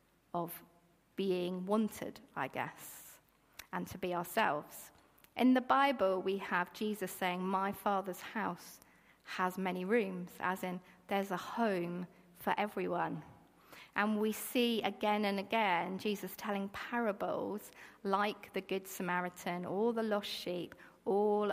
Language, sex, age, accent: English, female, 40-59, British